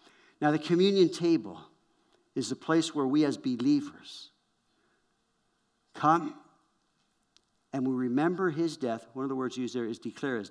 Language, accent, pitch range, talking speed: English, American, 125-180 Hz, 150 wpm